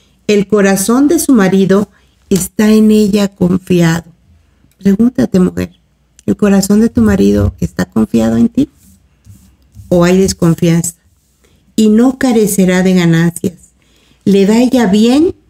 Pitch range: 170-215 Hz